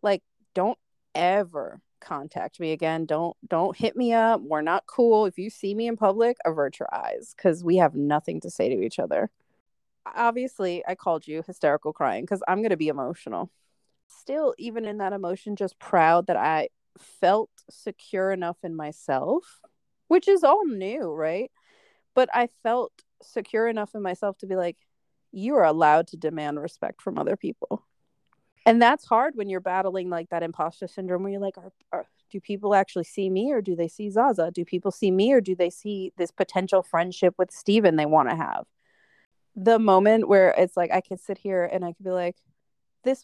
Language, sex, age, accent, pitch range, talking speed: English, female, 30-49, American, 170-210 Hz, 195 wpm